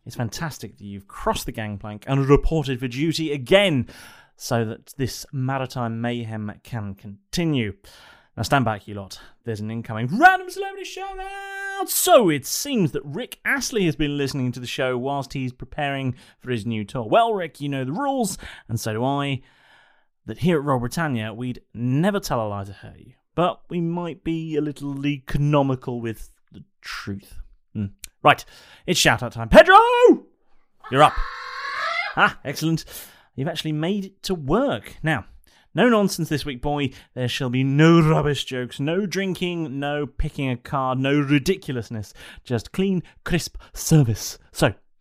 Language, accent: English, British